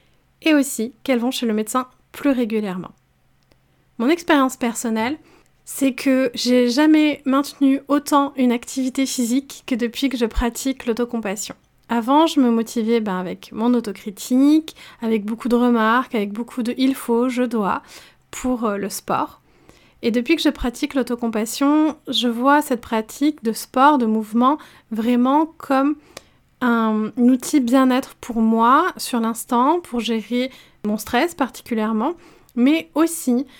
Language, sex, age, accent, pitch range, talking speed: French, female, 30-49, French, 230-275 Hz, 140 wpm